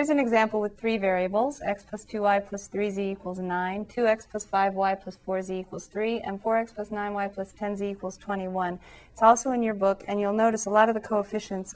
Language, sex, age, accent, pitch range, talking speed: English, female, 40-59, American, 190-225 Hz, 205 wpm